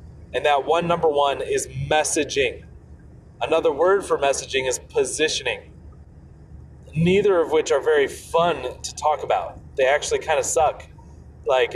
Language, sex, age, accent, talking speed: English, male, 30-49, American, 145 wpm